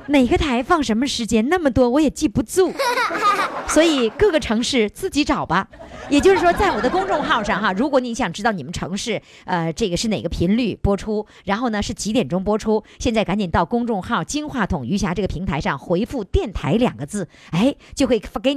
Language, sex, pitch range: Chinese, male, 195-305 Hz